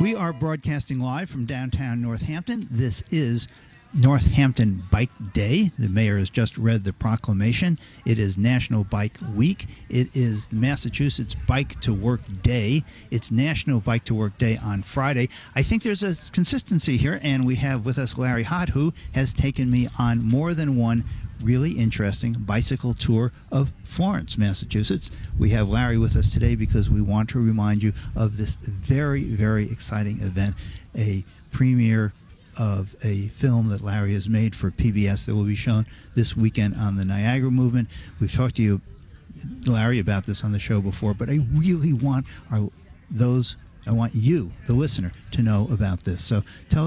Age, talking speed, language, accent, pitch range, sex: 50-69, 170 wpm, English, American, 105-130 Hz, male